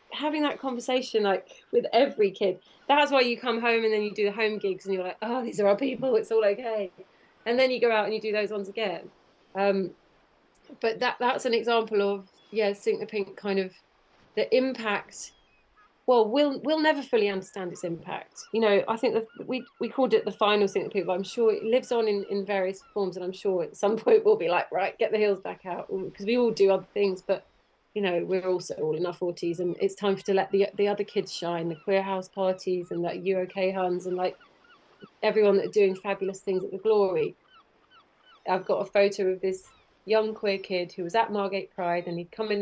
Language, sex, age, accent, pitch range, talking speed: English, female, 30-49, British, 185-225 Hz, 230 wpm